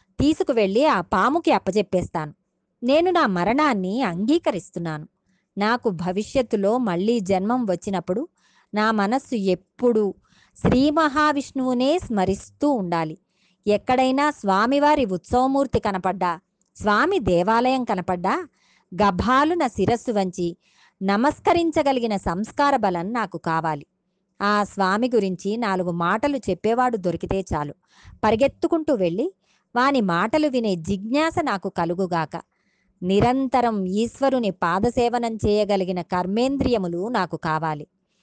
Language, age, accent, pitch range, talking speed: Telugu, 20-39, native, 185-265 Hz, 90 wpm